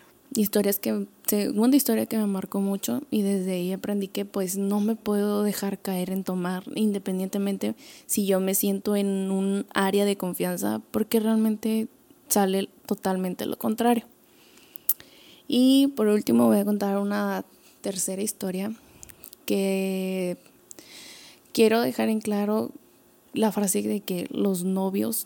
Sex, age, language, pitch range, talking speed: female, 20-39, Spanish, 195-225 Hz, 135 wpm